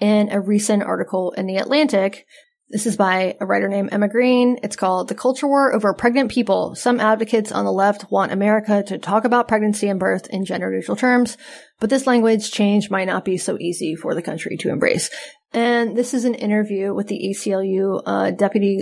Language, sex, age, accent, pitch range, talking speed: English, female, 20-39, American, 195-235 Hz, 205 wpm